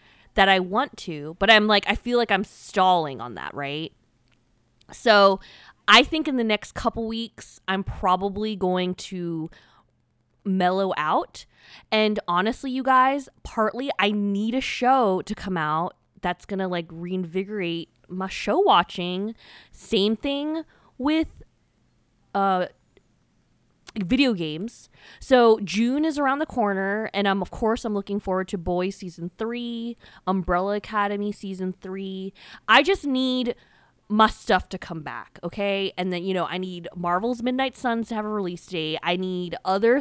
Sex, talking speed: female, 150 wpm